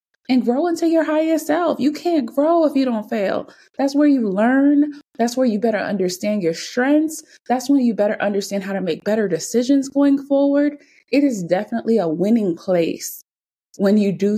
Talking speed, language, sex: 190 wpm, English, female